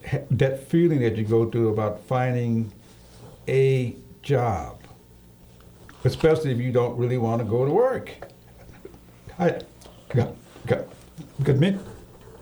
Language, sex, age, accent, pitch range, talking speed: English, male, 60-79, American, 105-145 Hz, 100 wpm